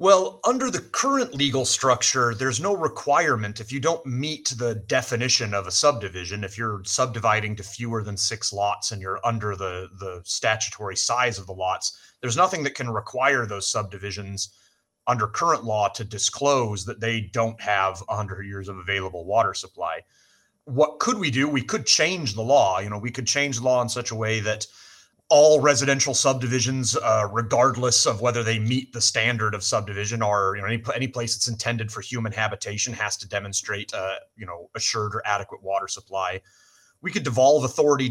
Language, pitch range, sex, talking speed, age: English, 105-130 Hz, male, 185 wpm, 30-49